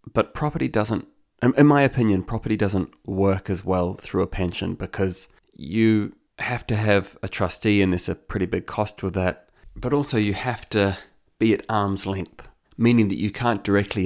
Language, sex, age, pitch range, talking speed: English, male, 30-49, 90-105 Hz, 185 wpm